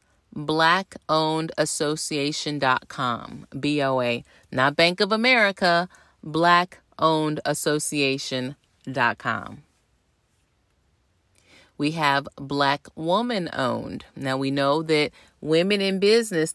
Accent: American